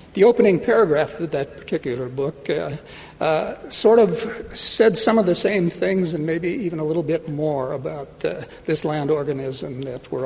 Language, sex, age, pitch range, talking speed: English, male, 60-79, 150-200 Hz, 180 wpm